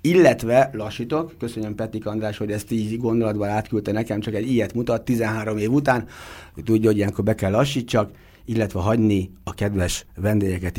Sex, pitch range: male, 105-140 Hz